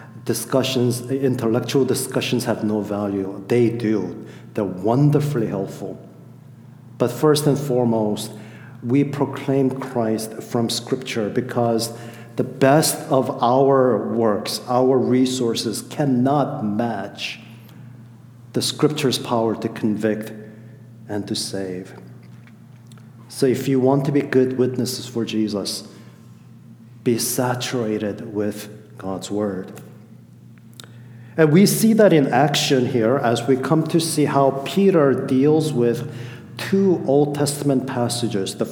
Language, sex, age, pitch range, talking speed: English, male, 50-69, 115-140 Hz, 115 wpm